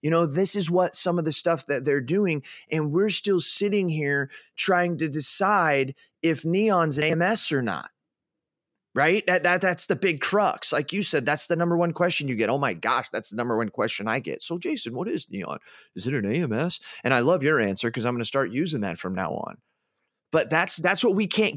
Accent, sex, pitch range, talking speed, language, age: American, male, 120-175 Hz, 230 wpm, English, 30-49